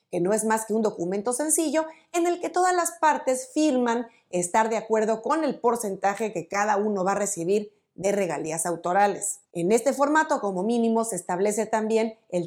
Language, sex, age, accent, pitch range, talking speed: Spanish, female, 30-49, Mexican, 195-260 Hz, 185 wpm